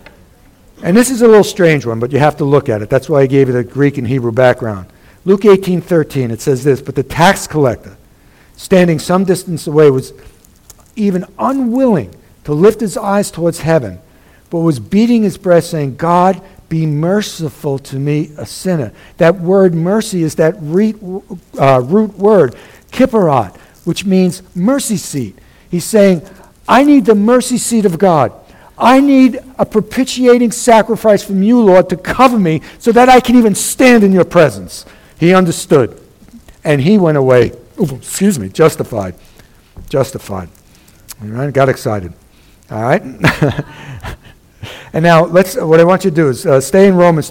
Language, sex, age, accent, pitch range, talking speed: English, male, 60-79, American, 135-195 Hz, 165 wpm